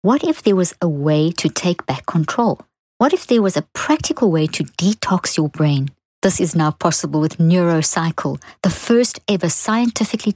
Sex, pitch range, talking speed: female, 160-205 Hz, 180 wpm